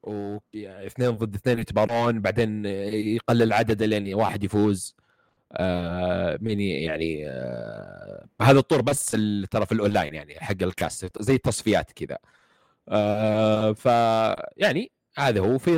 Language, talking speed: Arabic, 130 wpm